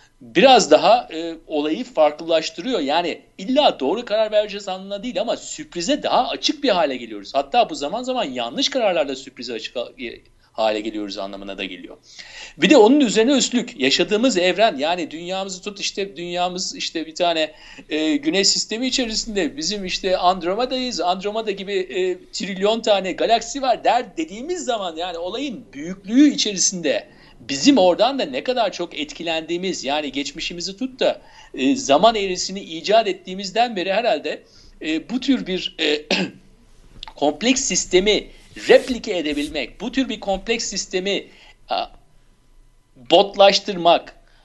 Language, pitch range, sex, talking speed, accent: Turkish, 175-255 Hz, male, 140 wpm, native